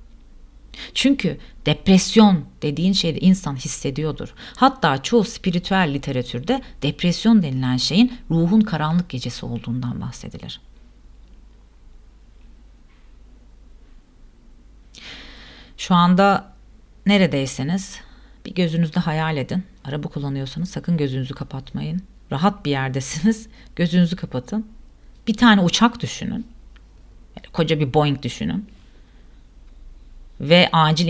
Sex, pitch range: female, 140-200 Hz